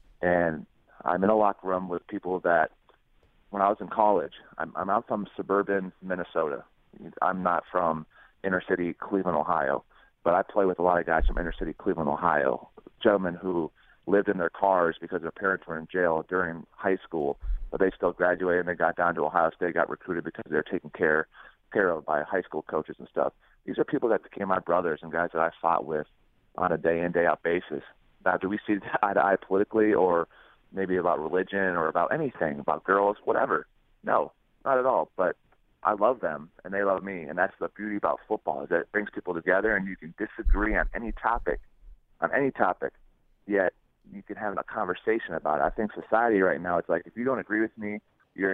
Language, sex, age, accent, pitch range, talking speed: English, male, 40-59, American, 85-100 Hz, 210 wpm